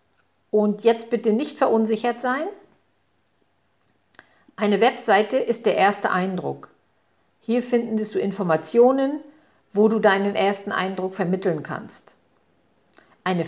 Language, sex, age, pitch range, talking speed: German, female, 50-69, 195-240 Hz, 105 wpm